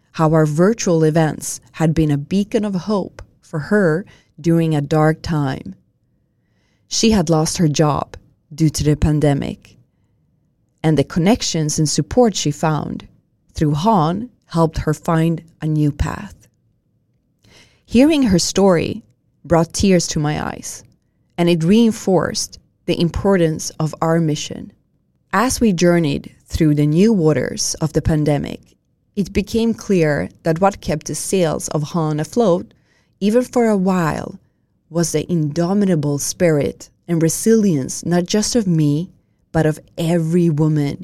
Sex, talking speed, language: female, 140 wpm, Swedish